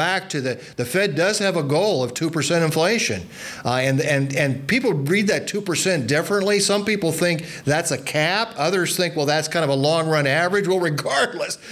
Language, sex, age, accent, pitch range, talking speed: English, male, 50-69, American, 130-160 Hz, 210 wpm